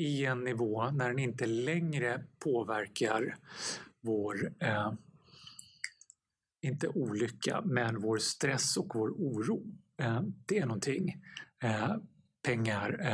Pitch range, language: 120-155 Hz, Swedish